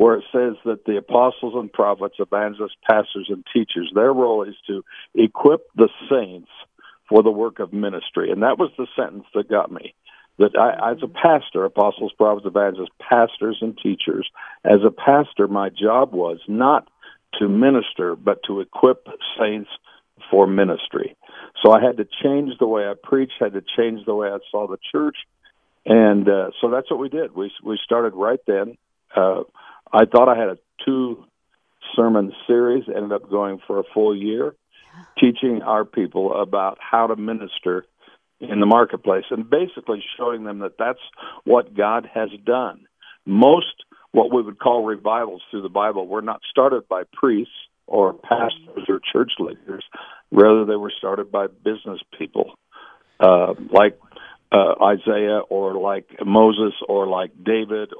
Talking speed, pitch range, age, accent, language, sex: 165 wpm, 100-120 Hz, 50-69, American, English, male